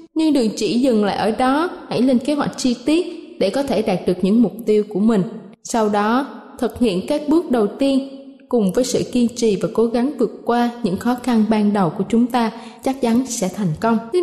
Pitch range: 215-265 Hz